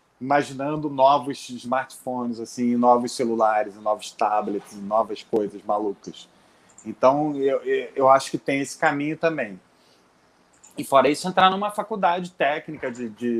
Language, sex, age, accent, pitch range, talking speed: Portuguese, male, 30-49, Brazilian, 135-185 Hz, 135 wpm